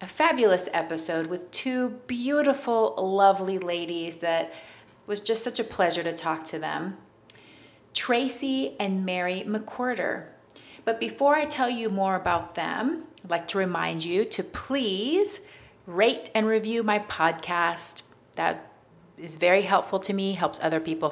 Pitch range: 165-235 Hz